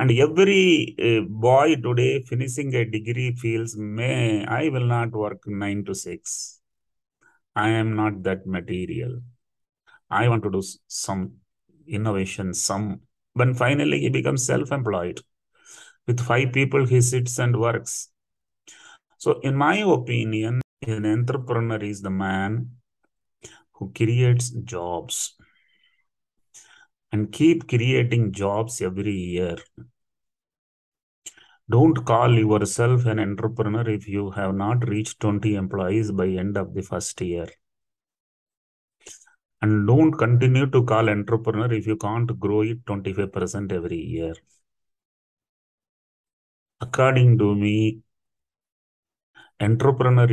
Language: Hindi